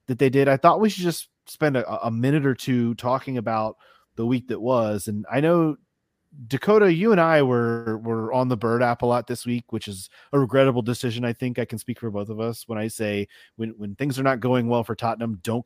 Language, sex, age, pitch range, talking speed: English, male, 30-49, 115-140 Hz, 245 wpm